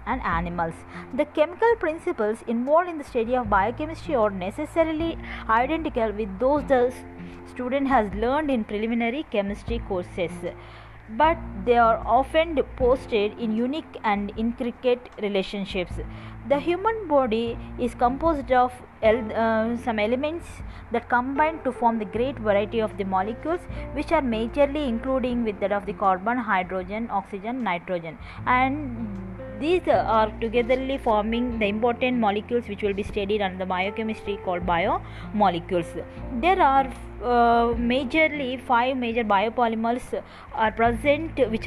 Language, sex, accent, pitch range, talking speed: English, female, Indian, 205-265 Hz, 135 wpm